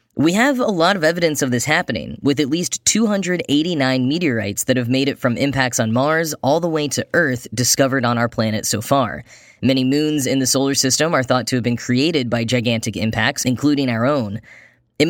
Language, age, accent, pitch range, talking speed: English, 10-29, American, 130-200 Hz, 205 wpm